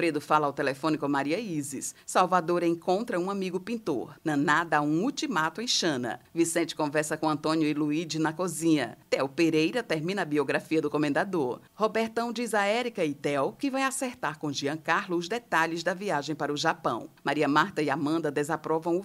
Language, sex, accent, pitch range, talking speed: Portuguese, female, Brazilian, 150-200 Hz, 185 wpm